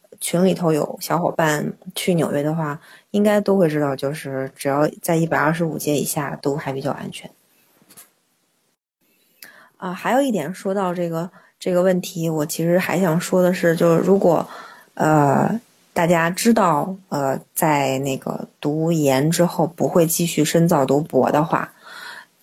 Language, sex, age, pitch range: Chinese, female, 20-39, 150-190 Hz